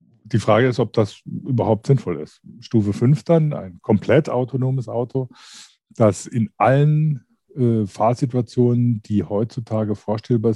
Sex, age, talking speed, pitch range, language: male, 50-69, 125 wpm, 100-120 Hz, German